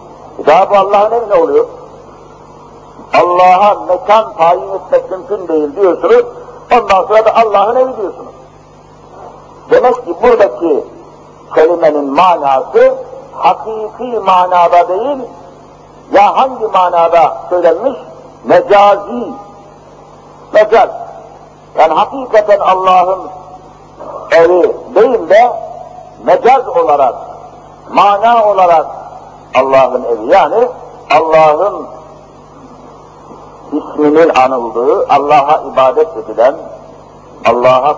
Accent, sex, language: native, male, Turkish